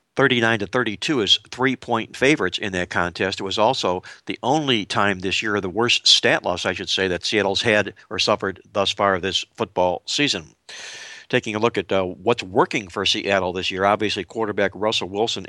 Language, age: English, 60-79